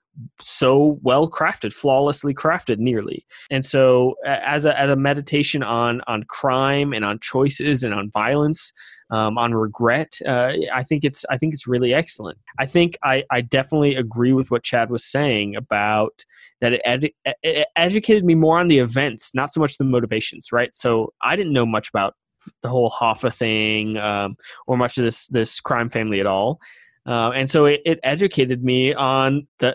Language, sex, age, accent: English, male, 20-39, American